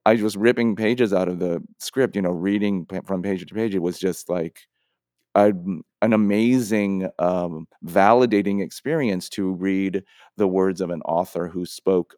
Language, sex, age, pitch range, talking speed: English, male, 40-59, 90-110 Hz, 170 wpm